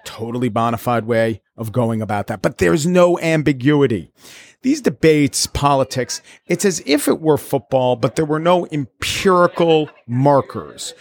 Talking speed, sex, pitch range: 145 wpm, male, 115-160 Hz